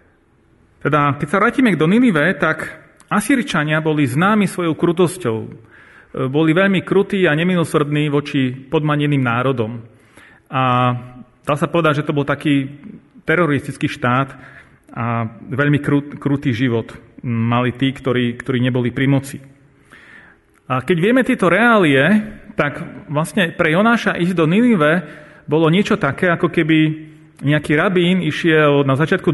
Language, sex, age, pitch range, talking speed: Slovak, male, 40-59, 135-165 Hz, 130 wpm